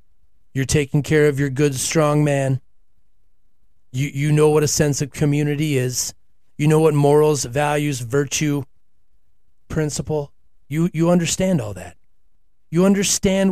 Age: 30-49